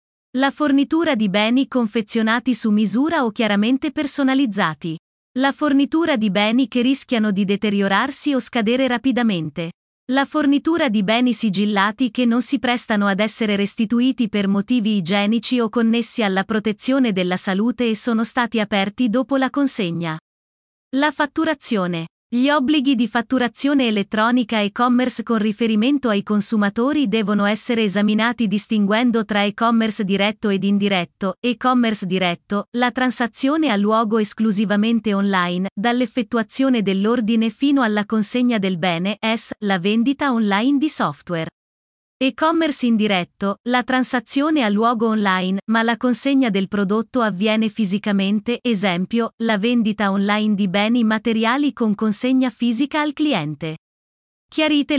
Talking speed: 130 wpm